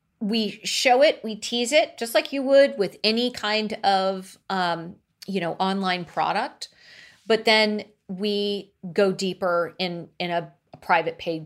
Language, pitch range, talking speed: English, 170-215 Hz, 150 wpm